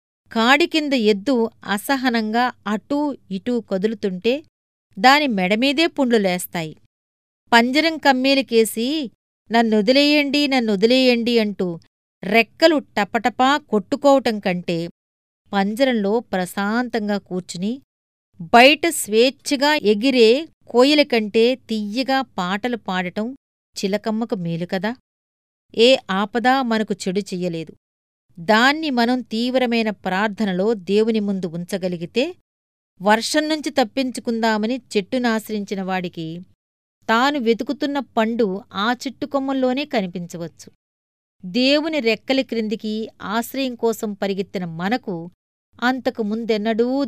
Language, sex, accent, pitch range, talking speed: Telugu, female, native, 200-255 Hz, 75 wpm